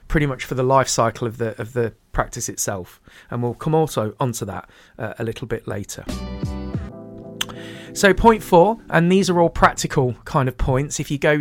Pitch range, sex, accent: 120-155 Hz, male, British